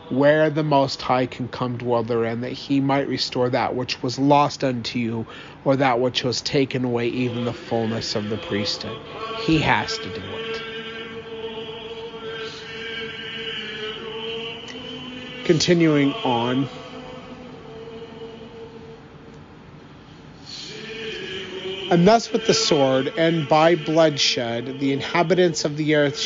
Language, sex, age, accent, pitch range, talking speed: English, male, 40-59, American, 140-200 Hz, 115 wpm